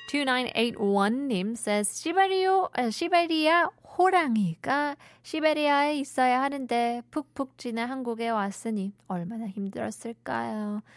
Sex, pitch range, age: female, 200-275 Hz, 20-39